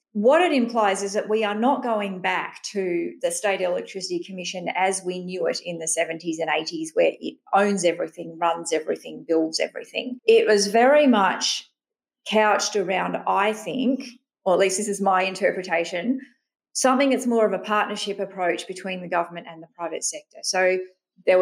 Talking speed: 175 wpm